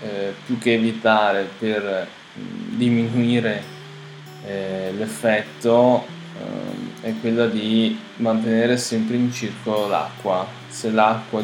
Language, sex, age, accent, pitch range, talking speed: Italian, male, 10-29, native, 105-125 Hz, 90 wpm